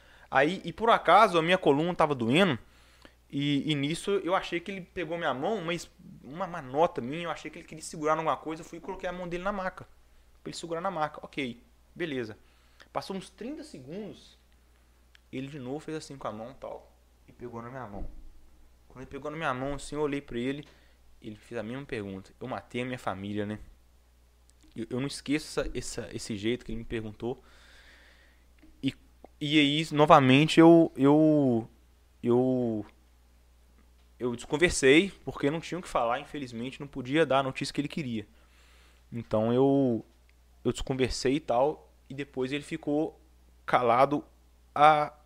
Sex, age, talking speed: male, 20-39, 175 wpm